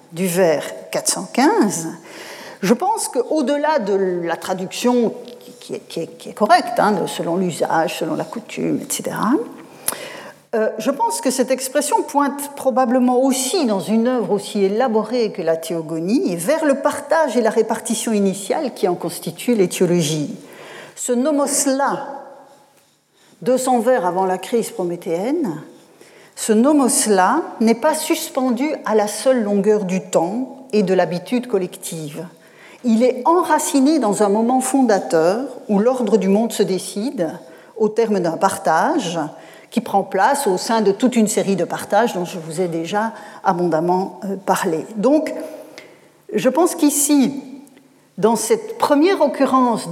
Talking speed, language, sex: 140 wpm, French, female